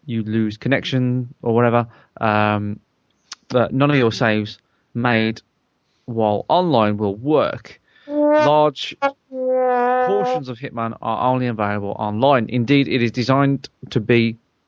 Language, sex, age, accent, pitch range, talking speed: English, male, 30-49, British, 110-140 Hz, 125 wpm